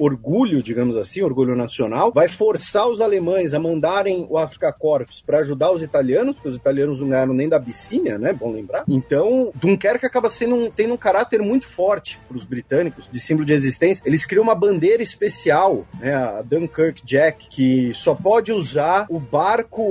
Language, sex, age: Portuguese, male, 40-59